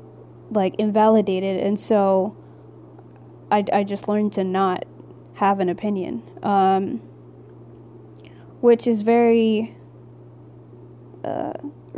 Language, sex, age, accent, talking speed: English, female, 20-39, American, 90 wpm